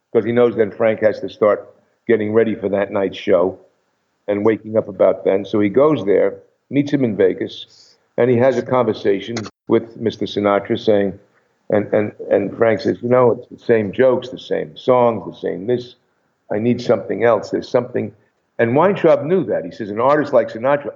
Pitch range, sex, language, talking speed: 110-135 Hz, male, English, 195 wpm